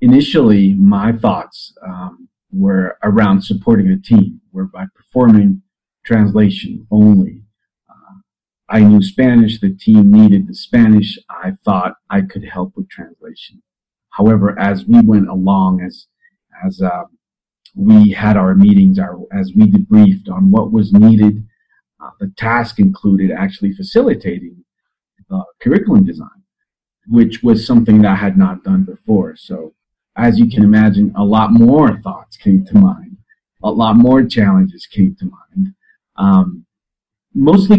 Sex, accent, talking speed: male, American, 140 wpm